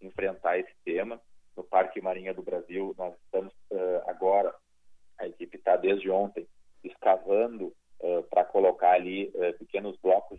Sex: male